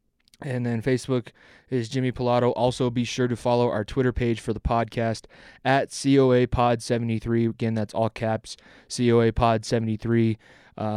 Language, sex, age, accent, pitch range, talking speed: English, male, 20-39, American, 115-125 Hz, 155 wpm